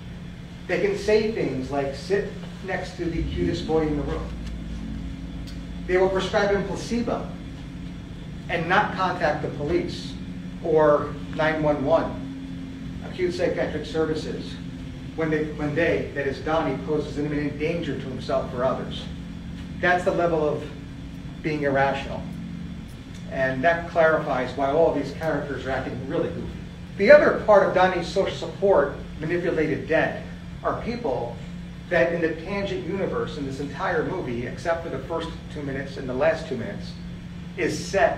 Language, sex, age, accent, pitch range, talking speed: English, male, 40-59, American, 145-175 Hz, 150 wpm